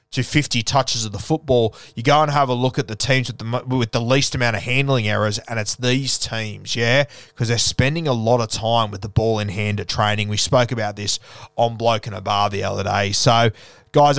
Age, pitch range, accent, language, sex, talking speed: 20-39, 115-145 Hz, Australian, English, male, 235 wpm